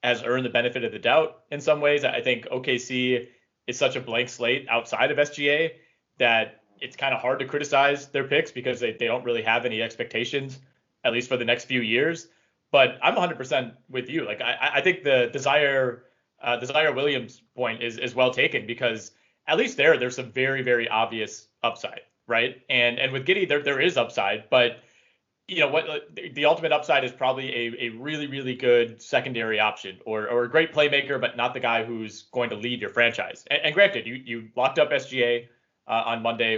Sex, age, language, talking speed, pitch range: male, 20-39, English, 205 wpm, 120-145 Hz